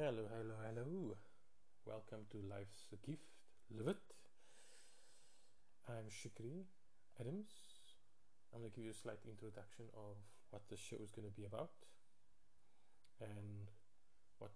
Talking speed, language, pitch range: 130 wpm, English, 100-115 Hz